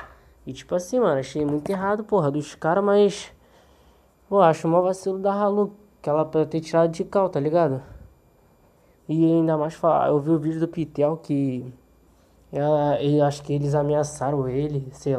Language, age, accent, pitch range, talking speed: Portuguese, 20-39, Brazilian, 150-200 Hz, 180 wpm